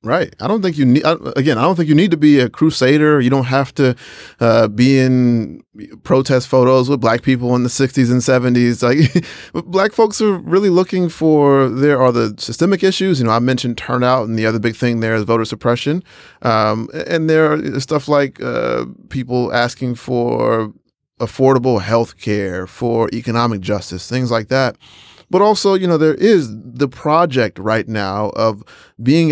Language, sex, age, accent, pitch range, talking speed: English, male, 30-49, American, 115-145 Hz, 185 wpm